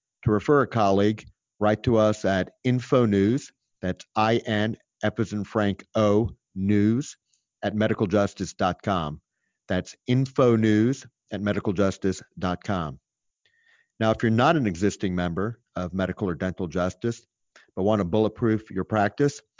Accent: American